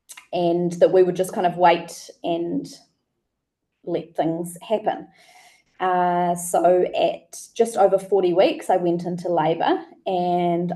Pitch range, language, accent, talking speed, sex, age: 175-215 Hz, English, Australian, 135 wpm, female, 20-39